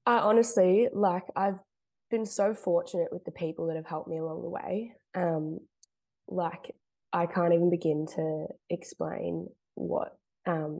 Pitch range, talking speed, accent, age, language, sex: 160-185 Hz, 150 wpm, Australian, 20-39, English, female